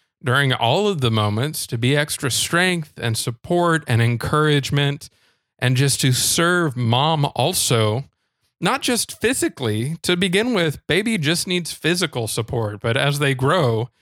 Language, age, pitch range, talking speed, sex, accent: English, 40-59, 120-160 Hz, 145 wpm, male, American